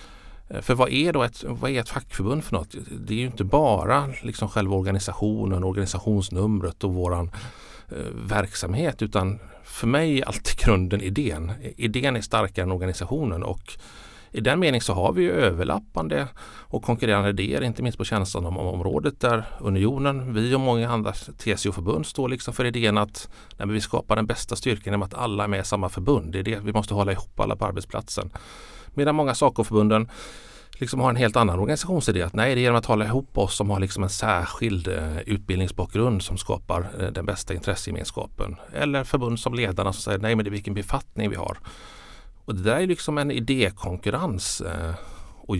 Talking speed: 185 wpm